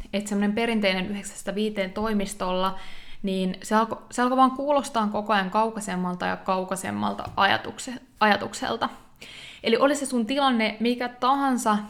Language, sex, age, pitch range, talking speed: Finnish, female, 20-39, 195-240 Hz, 120 wpm